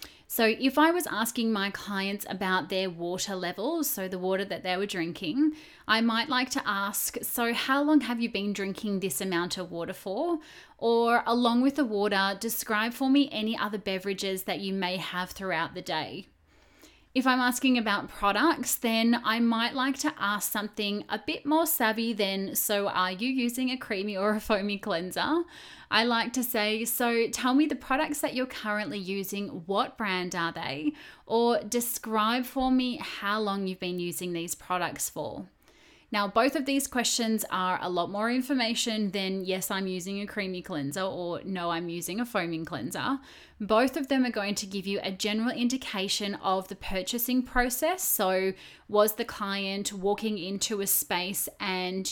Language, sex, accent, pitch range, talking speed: English, female, Australian, 190-245 Hz, 180 wpm